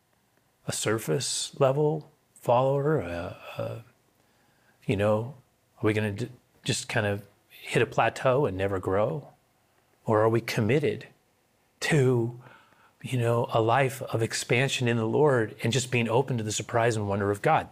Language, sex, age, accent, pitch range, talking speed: English, male, 30-49, American, 115-155 Hz, 155 wpm